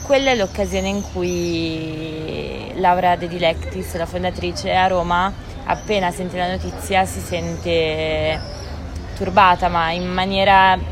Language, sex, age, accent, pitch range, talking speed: Italian, female, 20-39, native, 170-205 Hz, 120 wpm